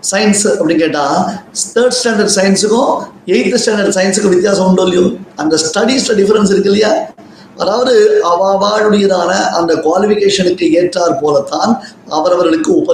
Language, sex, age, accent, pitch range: Tamil, male, 20-39, native, 155-215 Hz